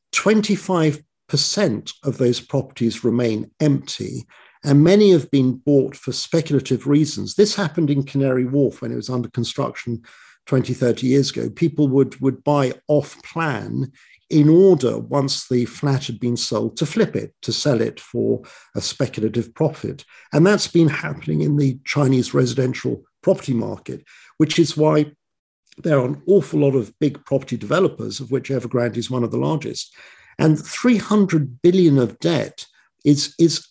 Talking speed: 155 wpm